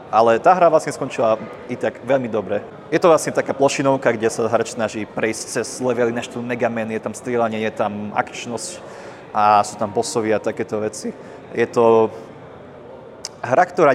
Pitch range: 110-135 Hz